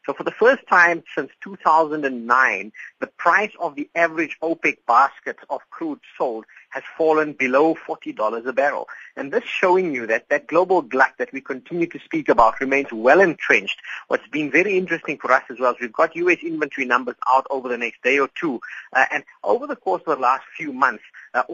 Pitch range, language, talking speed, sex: 125-170 Hz, English, 200 wpm, male